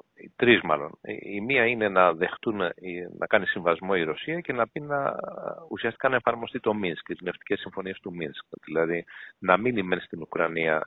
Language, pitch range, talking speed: Greek, 90-145 Hz, 175 wpm